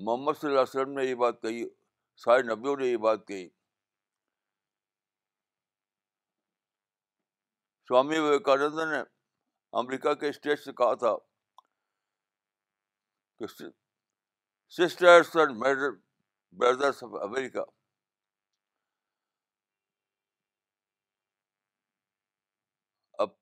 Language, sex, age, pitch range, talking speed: Urdu, male, 60-79, 95-135 Hz, 75 wpm